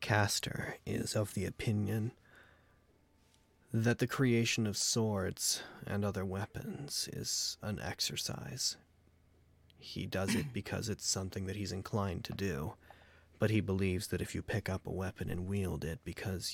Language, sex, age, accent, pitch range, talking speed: English, male, 30-49, American, 90-105 Hz, 150 wpm